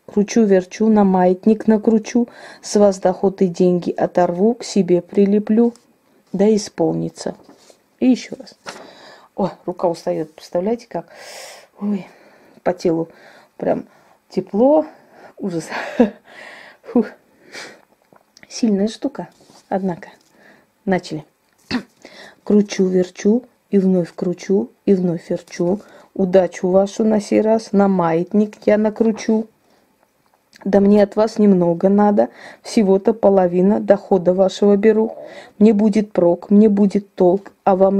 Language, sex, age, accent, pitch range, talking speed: Russian, female, 30-49, native, 180-220 Hz, 105 wpm